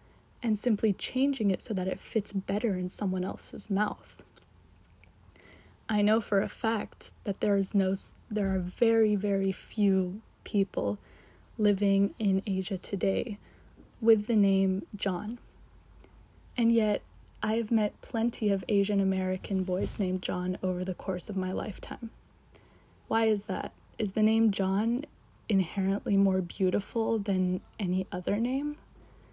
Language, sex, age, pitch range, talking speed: English, female, 20-39, 185-215 Hz, 135 wpm